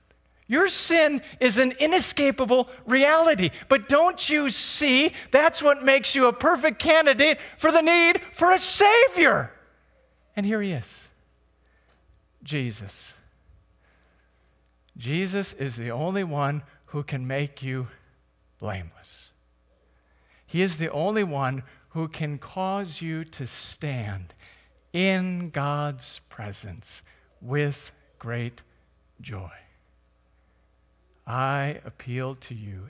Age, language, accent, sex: 50-69, English, American, male